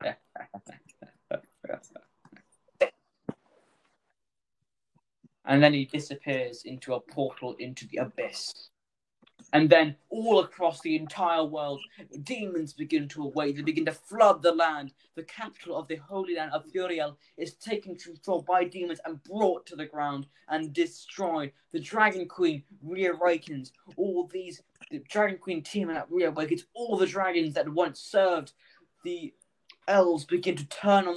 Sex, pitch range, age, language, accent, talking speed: male, 155-200 Hz, 10-29, English, British, 135 wpm